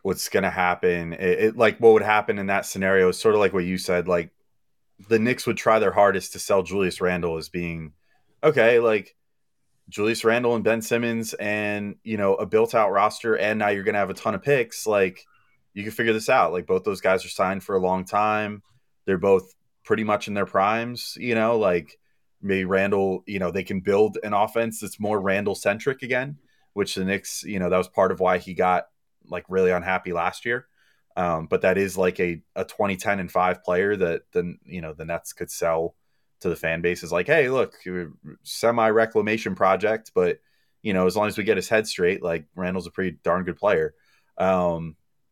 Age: 30-49